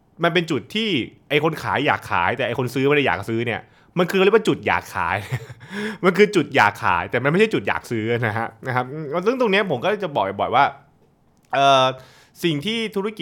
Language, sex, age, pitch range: Thai, male, 20-39, 100-140 Hz